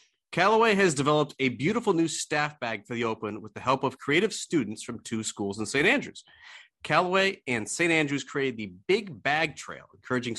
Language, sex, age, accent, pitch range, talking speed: English, male, 30-49, American, 115-160 Hz, 190 wpm